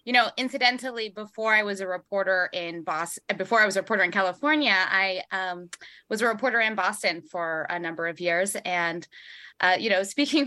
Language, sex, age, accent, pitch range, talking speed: English, female, 20-39, American, 185-230 Hz, 195 wpm